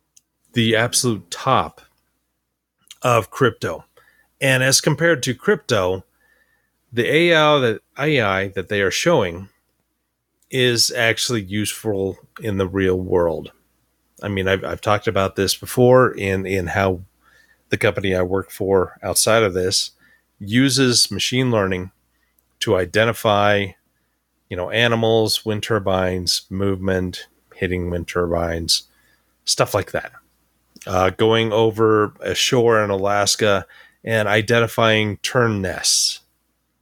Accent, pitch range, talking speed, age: American, 90-115 Hz, 115 wpm, 30-49